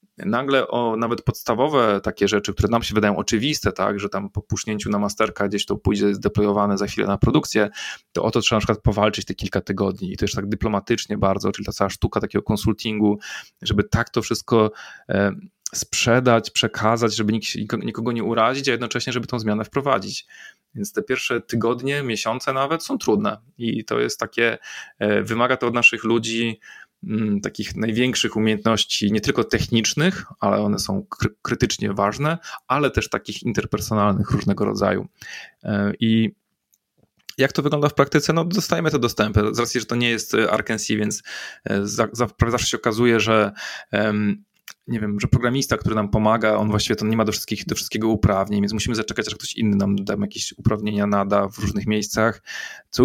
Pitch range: 105-120 Hz